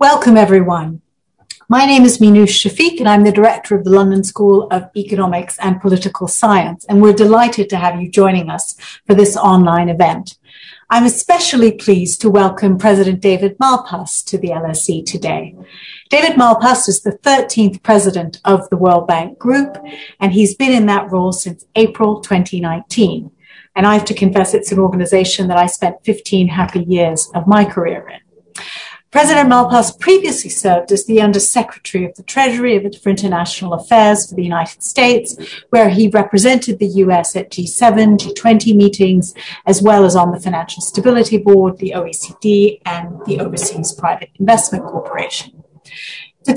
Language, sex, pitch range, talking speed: English, female, 185-225 Hz, 160 wpm